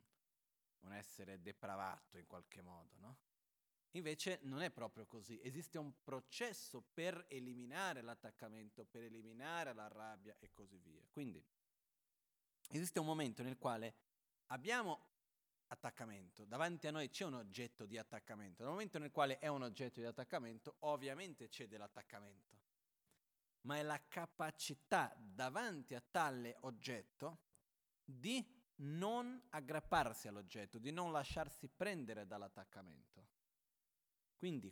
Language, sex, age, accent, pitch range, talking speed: Italian, male, 40-59, native, 115-150 Hz, 120 wpm